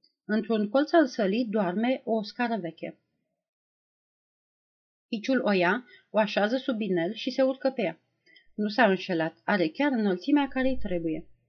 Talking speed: 150 wpm